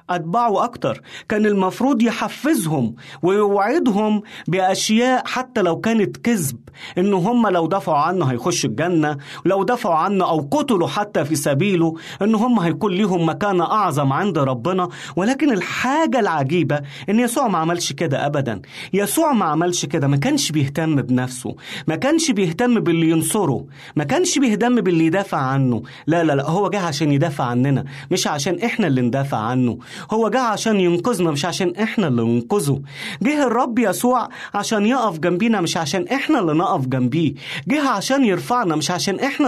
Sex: male